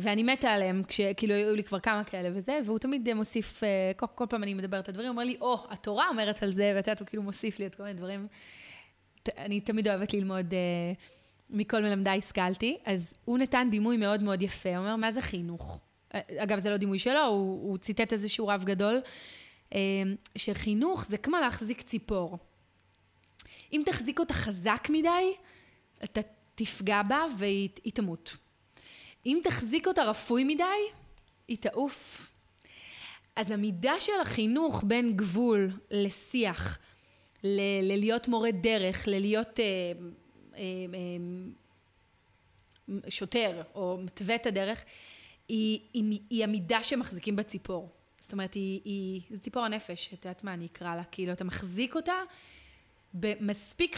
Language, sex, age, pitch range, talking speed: Hebrew, female, 20-39, 195-230 Hz, 155 wpm